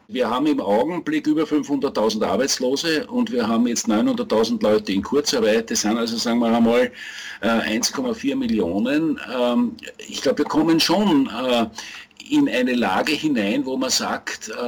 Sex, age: male, 50-69